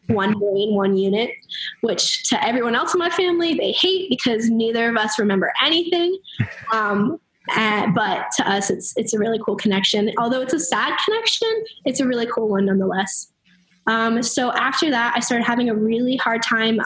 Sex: female